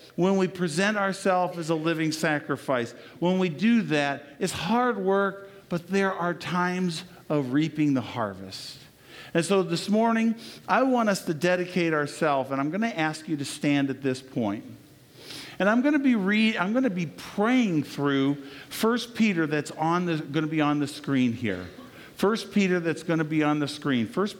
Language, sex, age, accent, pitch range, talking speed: English, male, 50-69, American, 145-195 Hz, 180 wpm